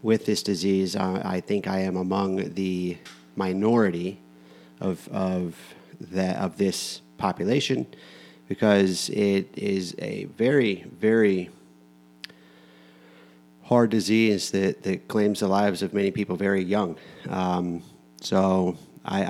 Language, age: English, 30-49